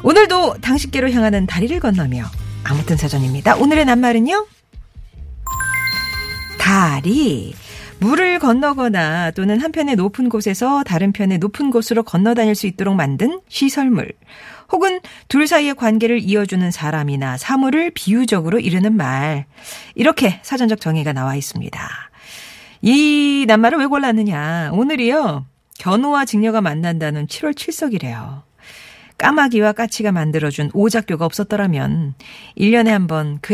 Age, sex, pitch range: 40-59, female, 165-270 Hz